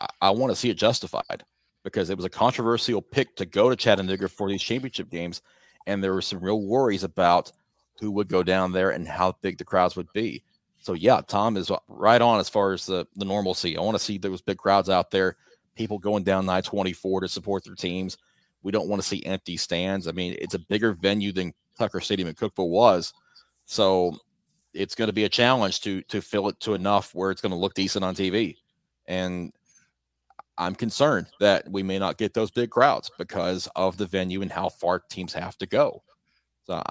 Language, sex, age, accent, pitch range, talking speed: English, male, 30-49, American, 95-105 Hz, 215 wpm